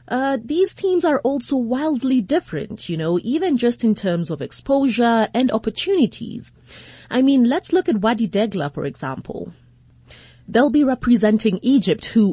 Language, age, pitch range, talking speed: English, 30-49, 175-250 Hz, 150 wpm